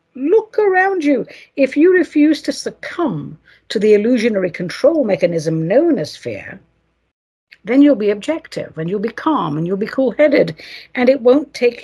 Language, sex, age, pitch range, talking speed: English, female, 60-79, 170-275 Hz, 160 wpm